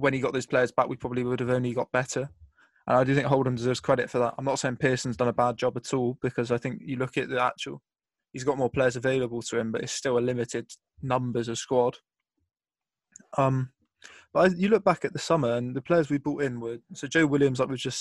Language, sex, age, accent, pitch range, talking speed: English, male, 20-39, British, 120-140 Hz, 255 wpm